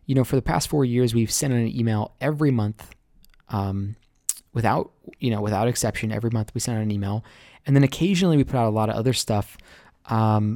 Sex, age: male, 20-39